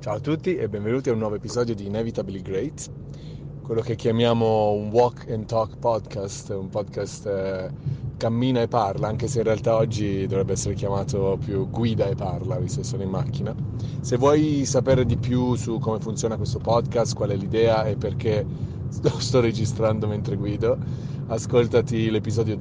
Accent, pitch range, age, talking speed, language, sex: native, 110-135 Hz, 30-49, 170 wpm, Italian, male